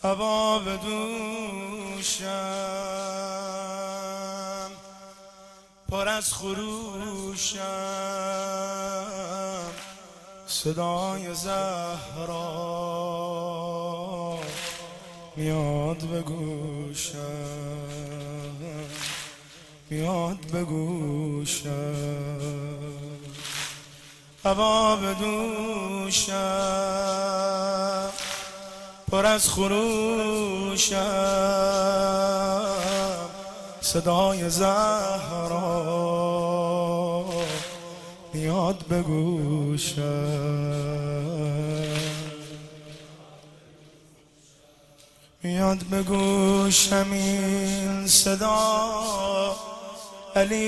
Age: 20-39